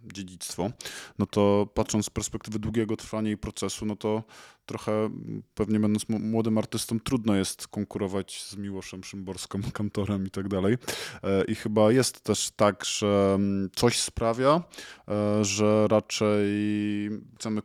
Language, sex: Polish, male